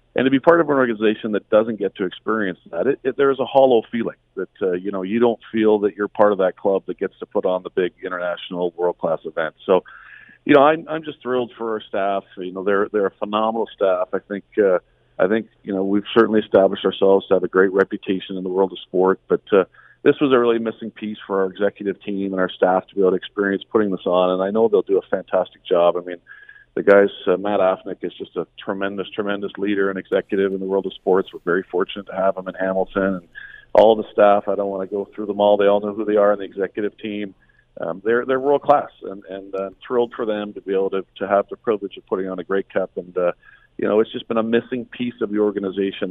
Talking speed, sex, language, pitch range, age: 260 wpm, male, English, 95-110 Hz, 40-59